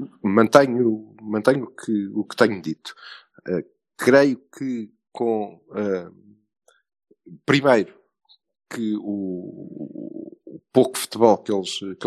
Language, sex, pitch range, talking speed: Portuguese, male, 100-170 Hz, 110 wpm